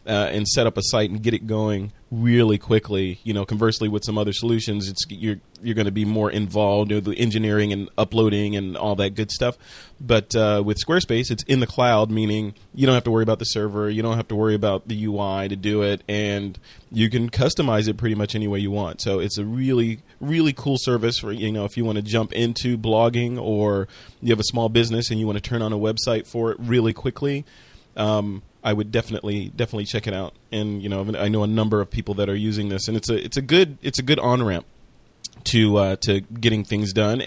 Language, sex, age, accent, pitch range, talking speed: English, male, 30-49, American, 105-120 Hz, 240 wpm